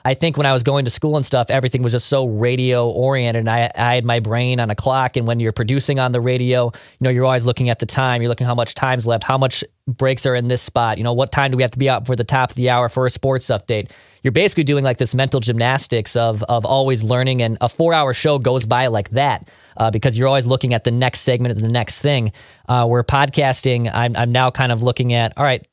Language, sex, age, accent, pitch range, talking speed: English, male, 20-39, American, 120-135 Hz, 275 wpm